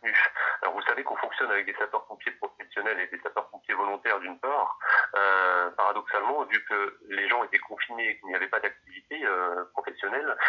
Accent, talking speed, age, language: French, 175 wpm, 30-49, French